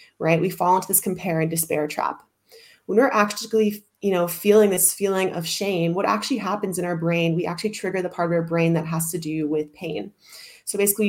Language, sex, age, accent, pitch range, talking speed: English, female, 20-39, American, 165-205 Hz, 220 wpm